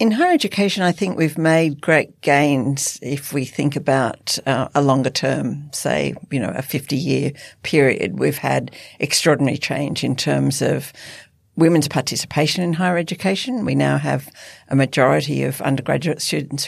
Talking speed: 155 wpm